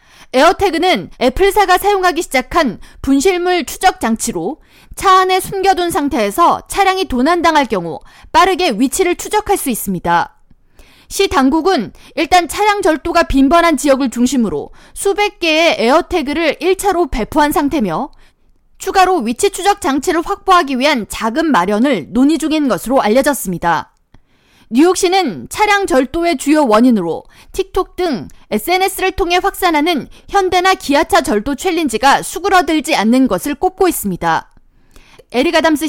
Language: Korean